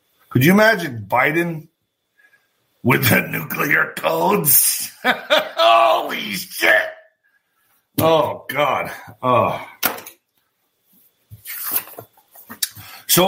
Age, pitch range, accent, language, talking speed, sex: 50-69, 130-175 Hz, American, English, 65 wpm, male